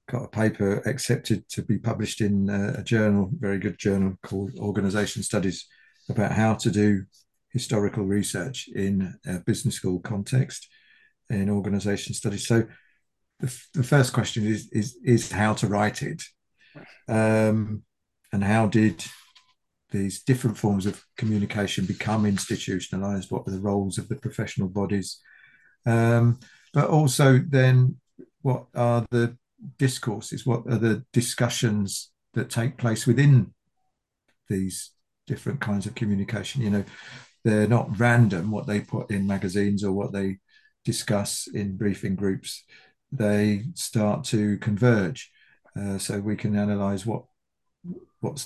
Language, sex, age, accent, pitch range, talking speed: English, male, 50-69, British, 100-120 Hz, 140 wpm